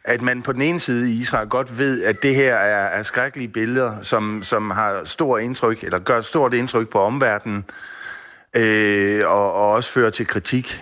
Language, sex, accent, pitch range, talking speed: Danish, male, native, 105-130 Hz, 195 wpm